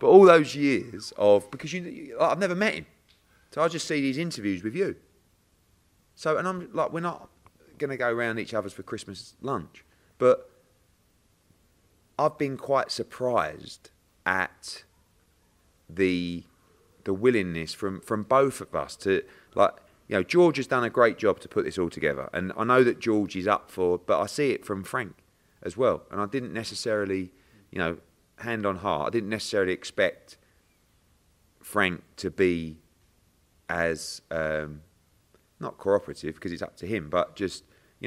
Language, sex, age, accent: English, male, 30-49, British